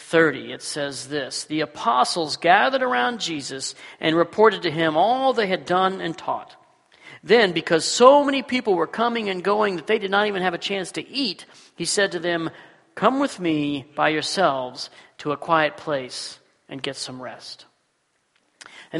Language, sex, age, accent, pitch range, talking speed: English, male, 40-59, American, 155-210 Hz, 175 wpm